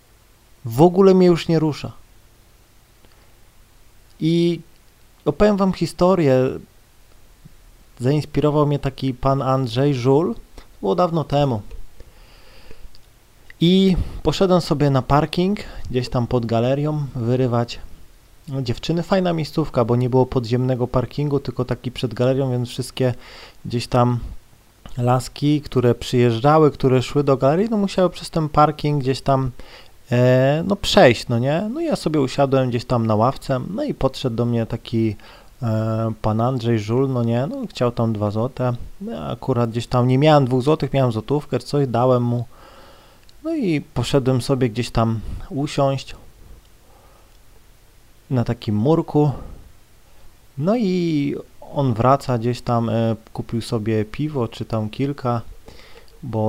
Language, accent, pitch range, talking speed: Polish, native, 115-145 Hz, 130 wpm